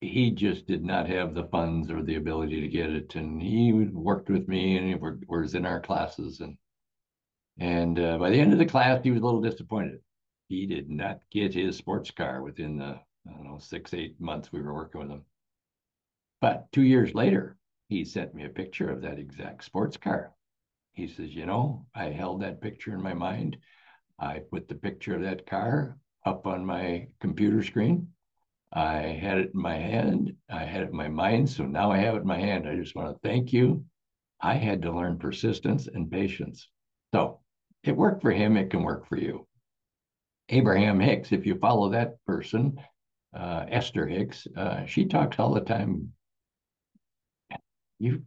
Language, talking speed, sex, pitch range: English, 195 wpm, male, 85-120 Hz